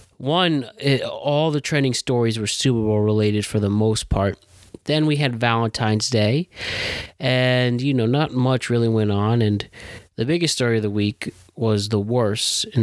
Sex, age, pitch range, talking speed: male, 30-49, 105-125 Hz, 170 wpm